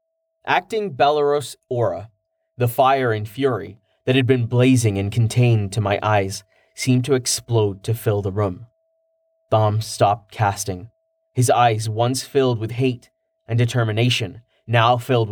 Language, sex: English, male